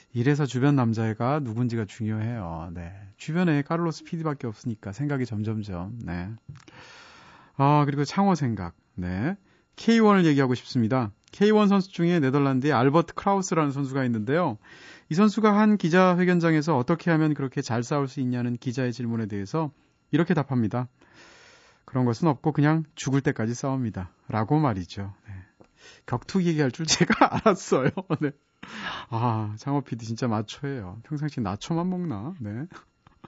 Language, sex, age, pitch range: Korean, male, 40-59, 115-170 Hz